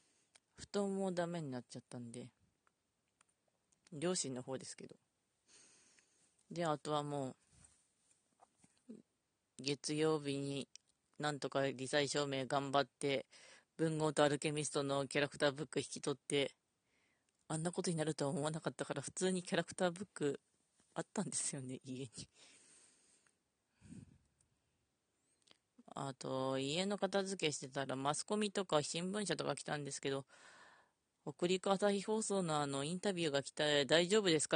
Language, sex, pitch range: Japanese, female, 135-170 Hz